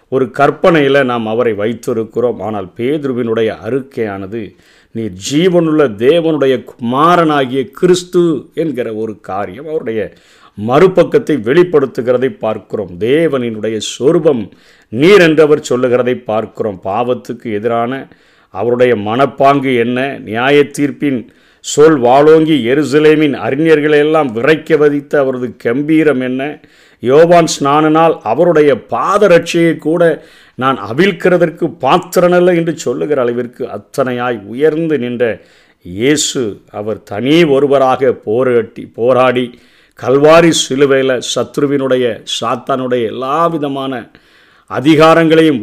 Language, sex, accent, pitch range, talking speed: Tamil, male, native, 115-155 Hz, 90 wpm